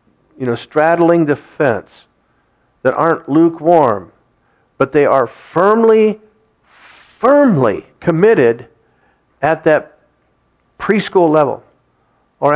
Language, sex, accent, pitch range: English, male, American, 130-175 Hz